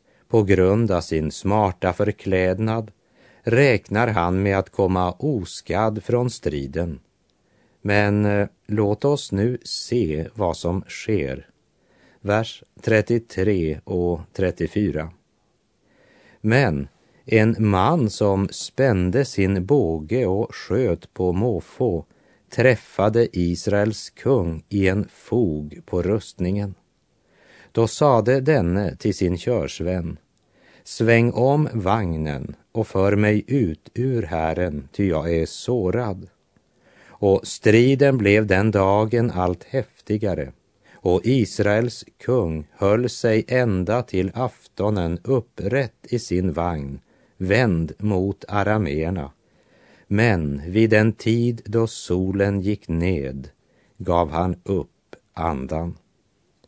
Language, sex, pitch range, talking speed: Swedish, male, 90-115 Hz, 105 wpm